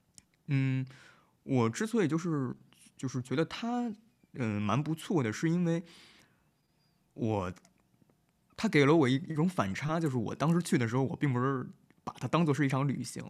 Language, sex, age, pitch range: Chinese, male, 20-39, 115-165 Hz